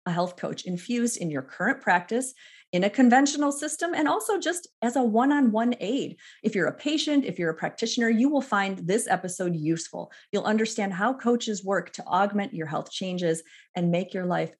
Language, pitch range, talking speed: English, 180-245 Hz, 195 wpm